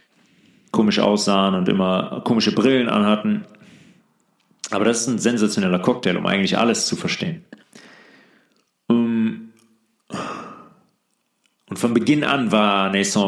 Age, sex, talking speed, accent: 40-59, male, 110 wpm, German